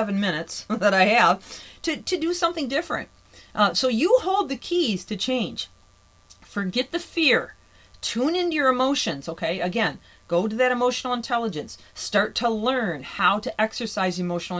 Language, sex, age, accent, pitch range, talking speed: English, female, 40-59, American, 175-255 Hz, 160 wpm